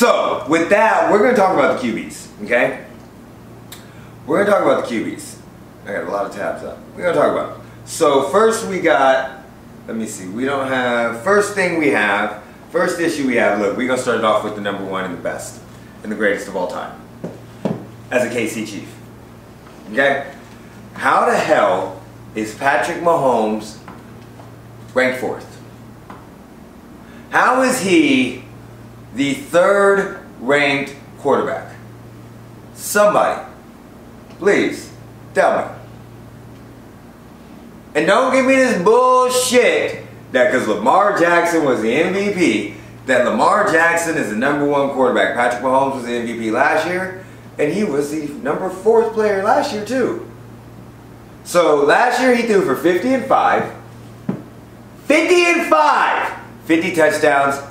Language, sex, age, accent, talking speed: English, male, 30-49, American, 150 wpm